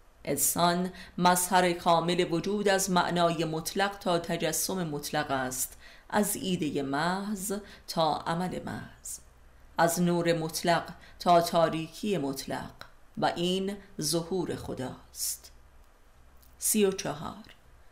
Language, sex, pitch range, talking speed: Persian, female, 135-185 Hz, 95 wpm